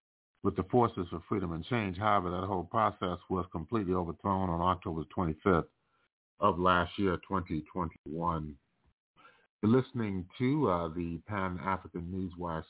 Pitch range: 90-110 Hz